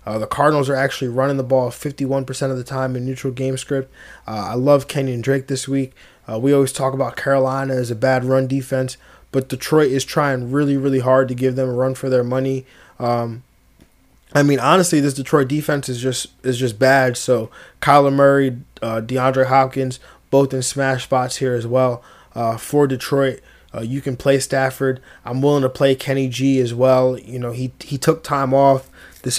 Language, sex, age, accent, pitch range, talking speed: English, male, 20-39, American, 125-135 Hz, 200 wpm